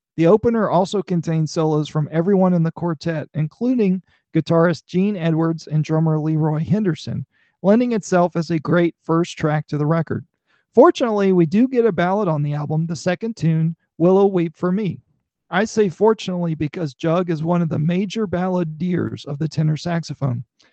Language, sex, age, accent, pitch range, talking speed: English, male, 40-59, American, 160-195 Hz, 170 wpm